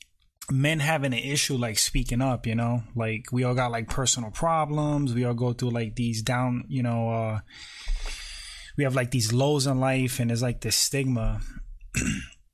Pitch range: 115-140 Hz